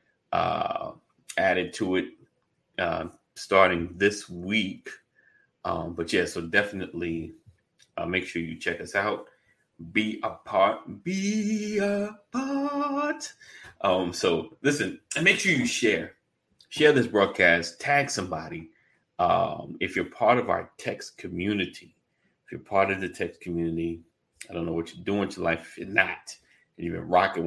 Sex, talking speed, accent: male, 150 wpm, American